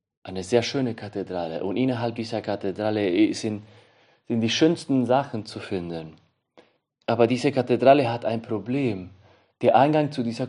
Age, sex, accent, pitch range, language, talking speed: 40-59, male, German, 100-125 Hz, German, 145 wpm